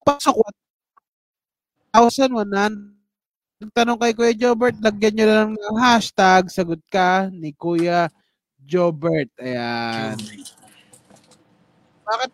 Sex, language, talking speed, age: male, Filipino, 90 wpm, 20-39